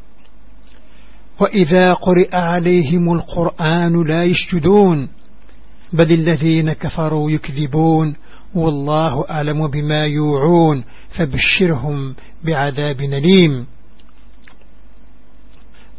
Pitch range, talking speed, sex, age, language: 150-180 Hz, 65 wpm, male, 60-79, Arabic